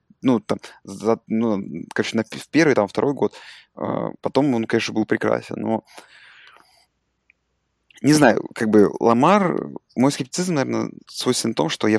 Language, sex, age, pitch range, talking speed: Russian, male, 20-39, 100-120 Hz, 150 wpm